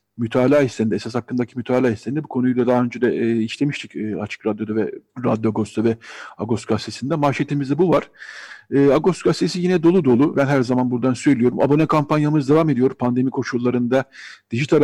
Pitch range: 120-140 Hz